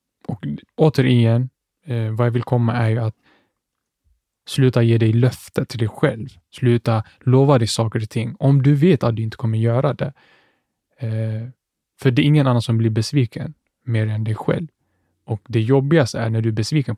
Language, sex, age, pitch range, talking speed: Swedish, male, 10-29, 115-140 Hz, 190 wpm